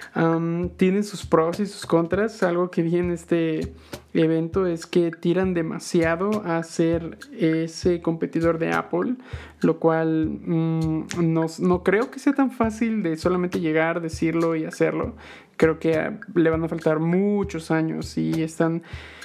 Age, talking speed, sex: 20-39, 145 wpm, male